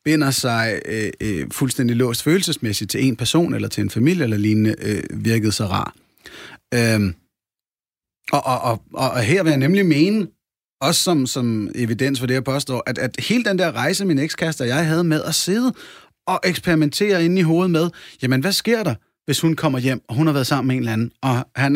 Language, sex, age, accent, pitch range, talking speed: Danish, male, 30-49, native, 120-160 Hz, 215 wpm